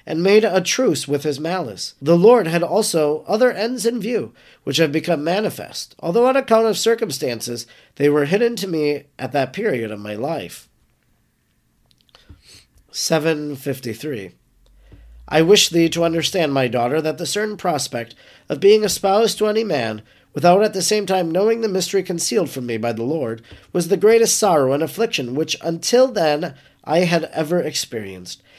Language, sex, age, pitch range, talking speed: English, male, 40-59, 145-205 Hz, 170 wpm